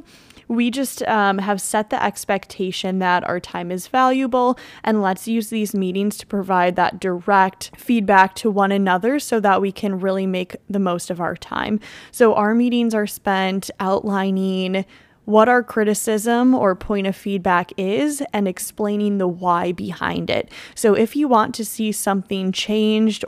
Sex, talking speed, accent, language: female, 165 wpm, American, English